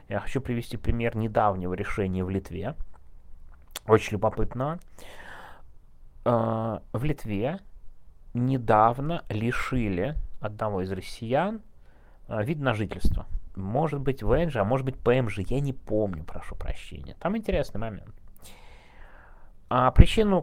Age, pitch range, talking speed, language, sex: 30-49, 95-145 Hz, 105 wpm, Russian, male